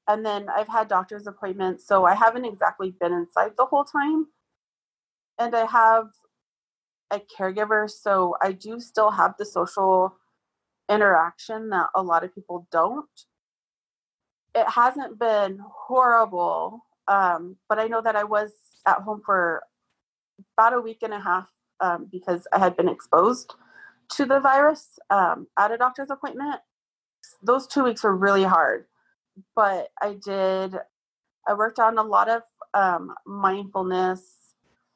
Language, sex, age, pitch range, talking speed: English, female, 30-49, 185-230 Hz, 145 wpm